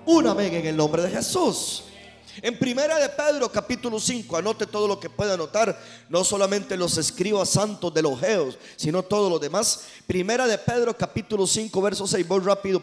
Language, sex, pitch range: Spanish, male, 150-205 Hz